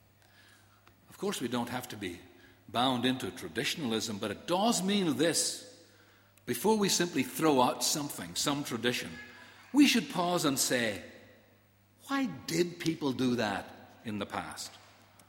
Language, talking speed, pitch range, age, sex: English, 140 wpm, 105-175 Hz, 60-79, male